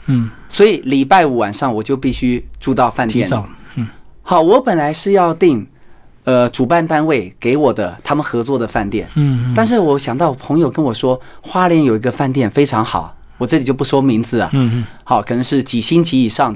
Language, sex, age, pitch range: Chinese, male, 30-49, 120-155 Hz